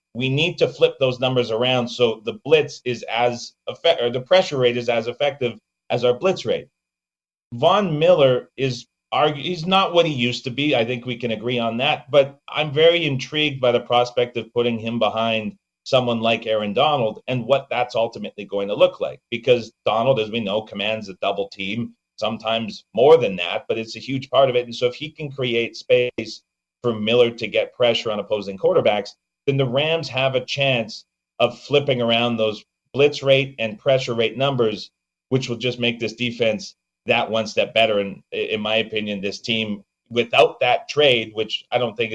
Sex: male